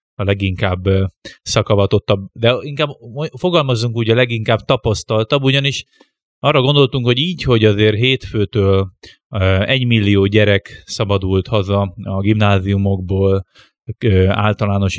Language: Hungarian